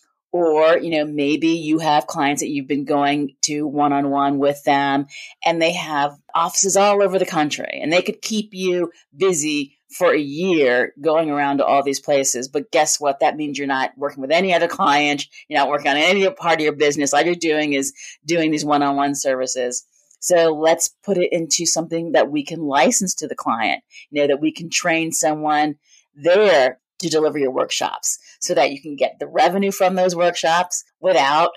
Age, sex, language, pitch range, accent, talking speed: 40-59, female, English, 140-170 Hz, American, 195 wpm